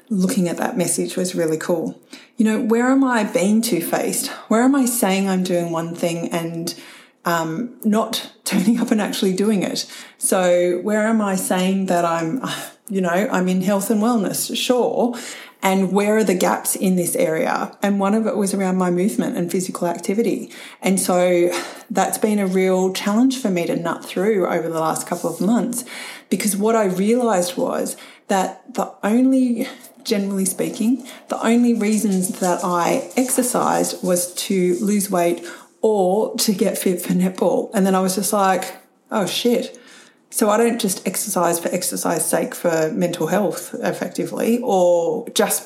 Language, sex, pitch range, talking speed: English, female, 185-235 Hz, 170 wpm